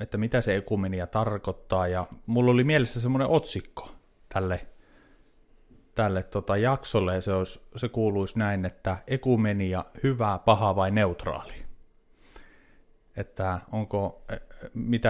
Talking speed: 120 wpm